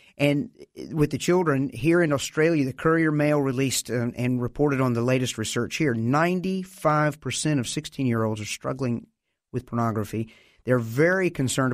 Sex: male